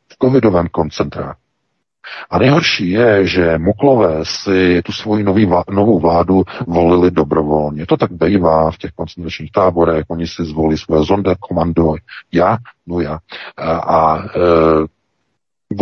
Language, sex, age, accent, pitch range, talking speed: Czech, male, 50-69, native, 80-95 Hz, 135 wpm